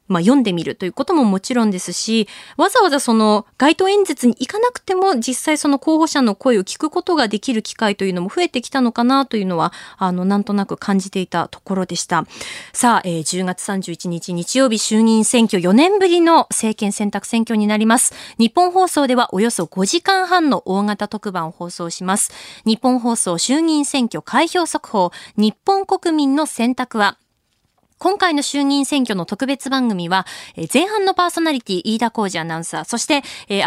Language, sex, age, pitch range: Japanese, female, 20-39, 195-295 Hz